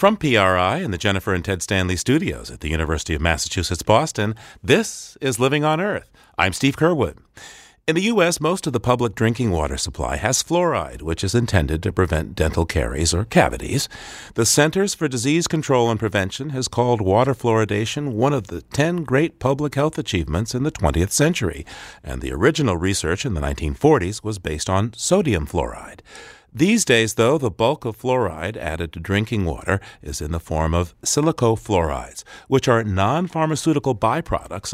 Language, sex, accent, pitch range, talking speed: English, male, American, 90-140 Hz, 175 wpm